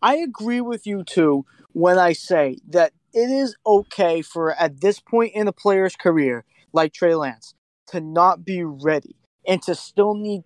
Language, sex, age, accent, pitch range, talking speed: English, male, 20-39, American, 155-205 Hz, 180 wpm